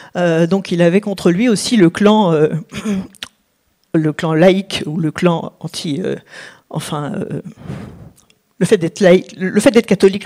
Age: 50-69